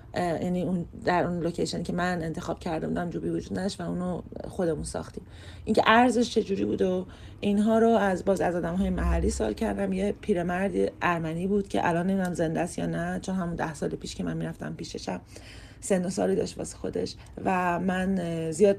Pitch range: 170-215 Hz